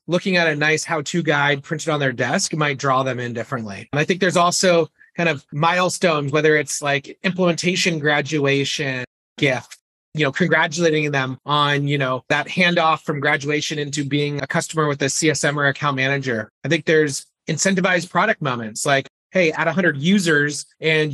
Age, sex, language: 30-49, male, English